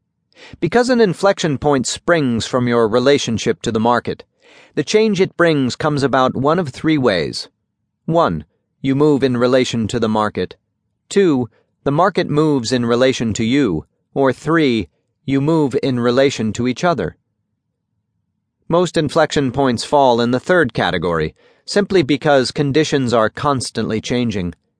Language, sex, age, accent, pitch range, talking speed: English, male, 40-59, American, 115-155 Hz, 145 wpm